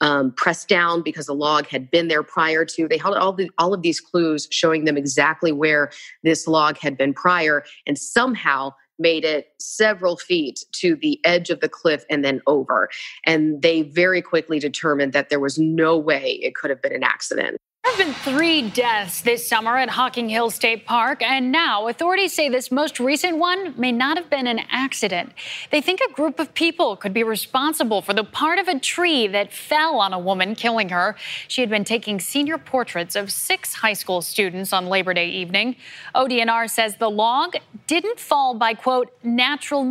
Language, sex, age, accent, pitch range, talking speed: English, female, 30-49, American, 160-255 Hz, 195 wpm